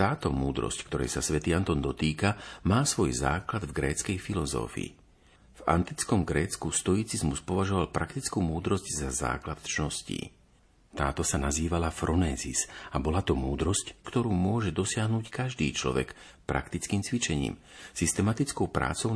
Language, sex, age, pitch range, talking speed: Slovak, male, 50-69, 75-95 Hz, 125 wpm